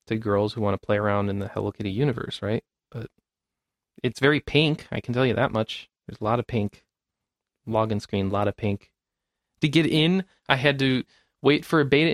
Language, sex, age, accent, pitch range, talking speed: English, male, 20-39, American, 105-135 Hz, 215 wpm